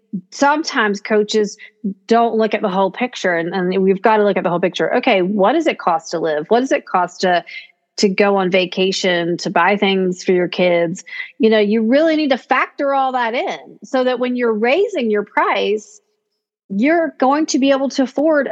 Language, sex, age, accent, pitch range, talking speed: English, female, 30-49, American, 190-245 Hz, 205 wpm